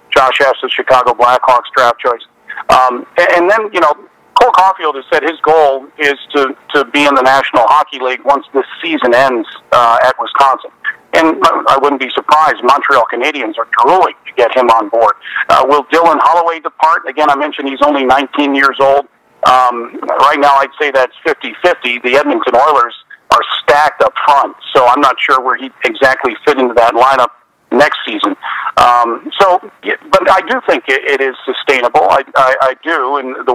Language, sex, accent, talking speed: English, male, American, 185 wpm